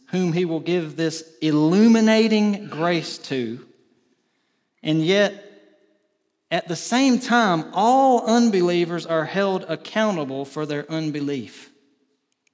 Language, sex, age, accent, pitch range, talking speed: English, male, 40-59, American, 135-180 Hz, 105 wpm